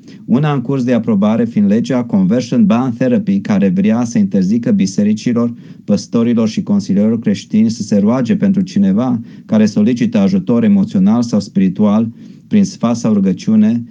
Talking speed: 145 wpm